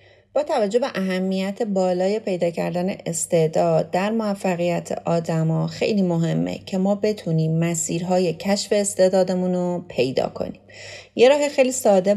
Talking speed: 130 wpm